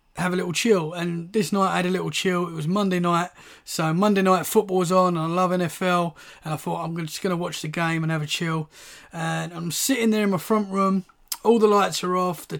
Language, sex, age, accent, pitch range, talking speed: English, male, 20-39, British, 170-205 Hz, 250 wpm